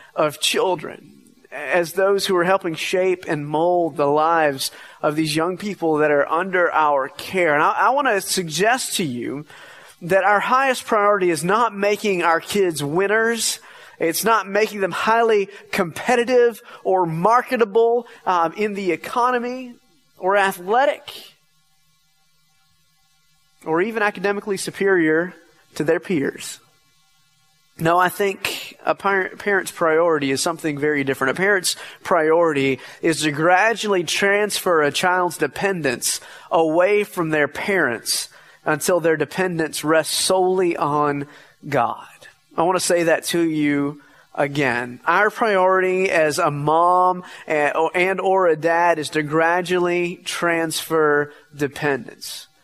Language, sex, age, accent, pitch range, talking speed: English, male, 30-49, American, 155-195 Hz, 130 wpm